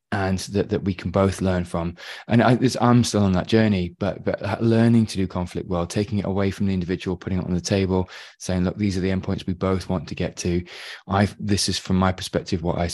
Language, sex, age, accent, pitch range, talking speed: English, male, 20-39, British, 90-105 Hz, 245 wpm